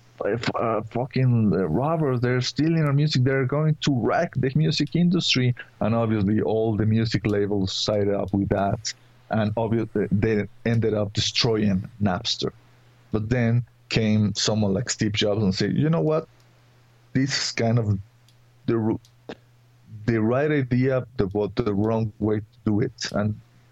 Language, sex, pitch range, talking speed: English, male, 105-120 Hz, 150 wpm